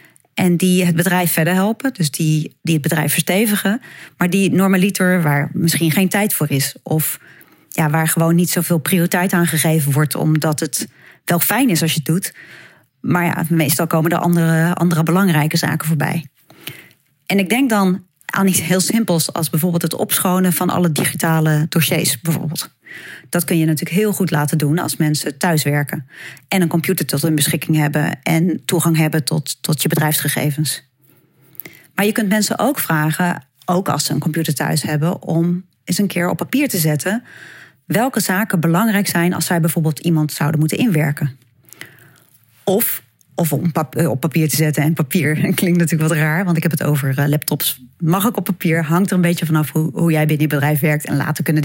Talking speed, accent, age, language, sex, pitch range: 190 wpm, Dutch, 30-49, Dutch, female, 155-180 Hz